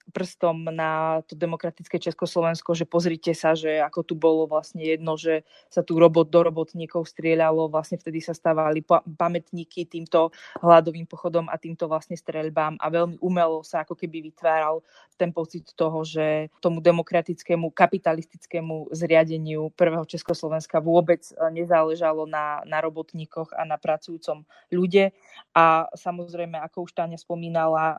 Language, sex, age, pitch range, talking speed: Slovak, female, 20-39, 160-170 Hz, 140 wpm